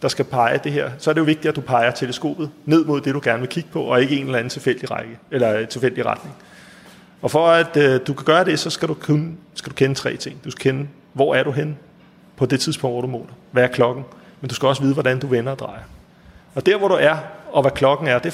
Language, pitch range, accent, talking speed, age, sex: Danish, 125-160 Hz, native, 280 wpm, 30-49, male